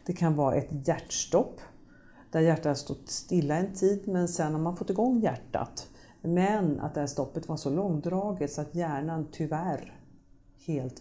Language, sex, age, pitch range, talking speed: Swedish, female, 50-69, 145-185 Hz, 175 wpm